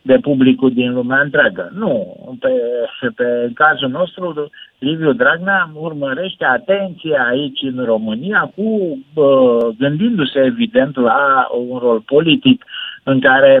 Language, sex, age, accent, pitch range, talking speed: Romanian, male, 50-69, native, 135-185 Hz, 115 wpm